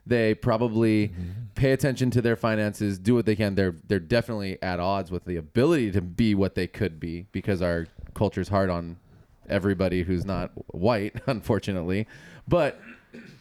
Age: 20-39